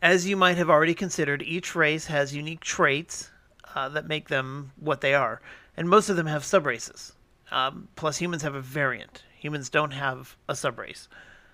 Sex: male